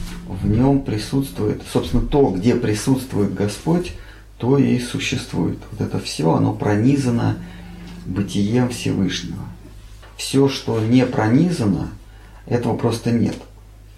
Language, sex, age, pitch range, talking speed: Russian, male, 30-49, 95-125 Hz, 105 wpm